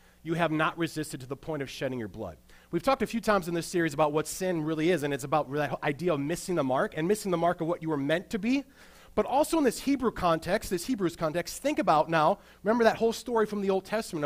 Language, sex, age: English, male, 30-49